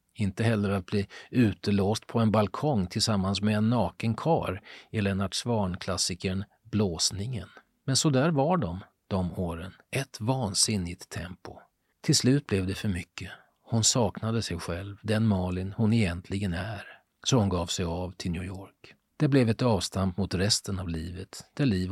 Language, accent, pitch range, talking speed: Swedish, native, 95-115 Hz, 165 wpm